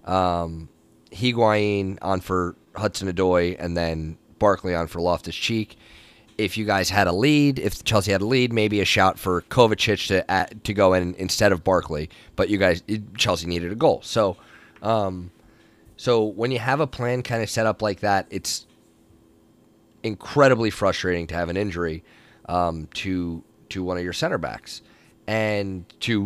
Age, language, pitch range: 30-49, English, 85-110 Hz